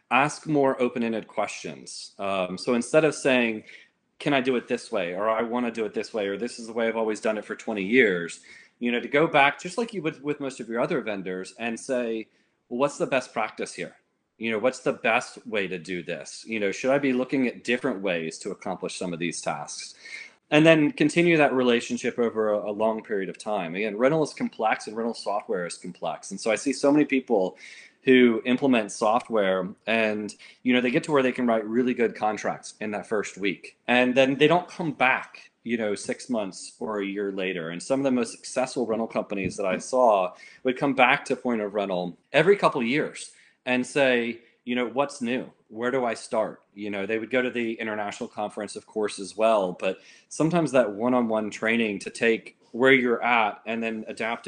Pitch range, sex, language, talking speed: 105-130 Hz, male, English, 225 wpm